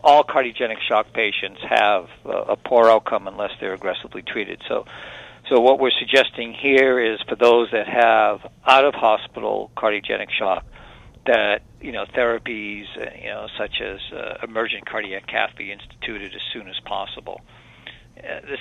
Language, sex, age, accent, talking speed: English, male, 60-79, American, 150 wpm